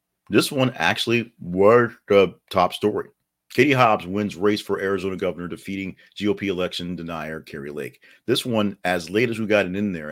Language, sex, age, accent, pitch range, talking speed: English, male, 40-59, American, 80-100 Hz, 180 wpm